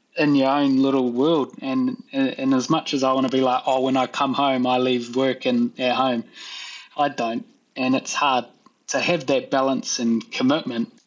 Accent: Australian